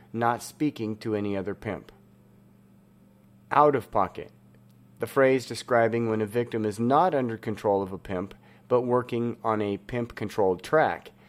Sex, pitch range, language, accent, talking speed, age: male, 90-120 Hz, English, American, 140 wpm, 40-59